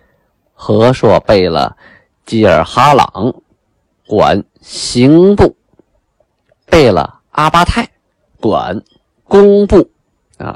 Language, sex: Chinese, male